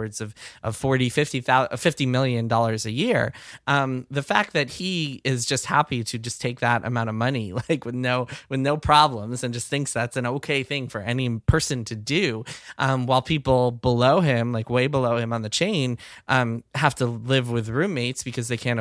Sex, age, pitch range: male, 20-39, 115-145 Hz